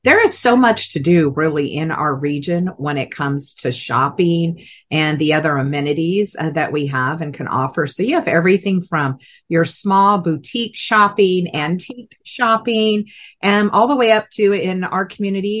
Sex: female